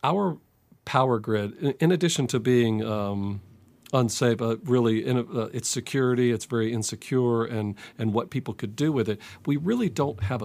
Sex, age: male, 40-59